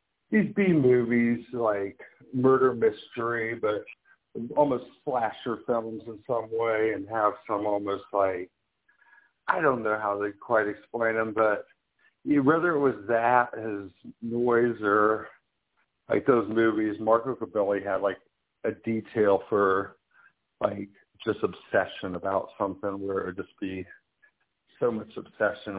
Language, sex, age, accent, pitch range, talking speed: English, male, 50-69, American, 100-120 Hz, 135 wpm